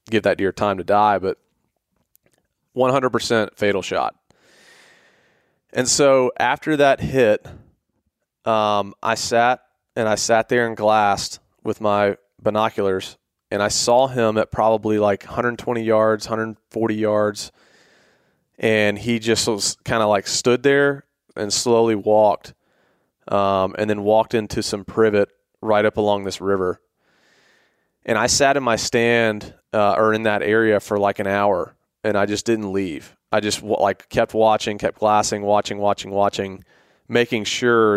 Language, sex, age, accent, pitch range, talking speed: English, male, 30-49, American, 100-115 Hz, 150 wpm